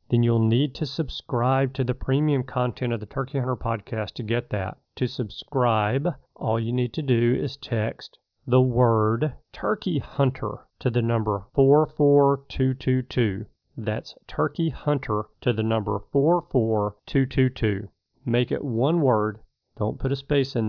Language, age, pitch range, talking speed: English, 40-59, 110-135 Hz, 145 wpm